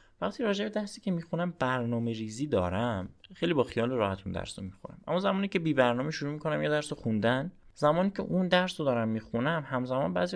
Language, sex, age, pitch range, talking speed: Persian, male, 20-39, 100-145 Hz, 190 wpm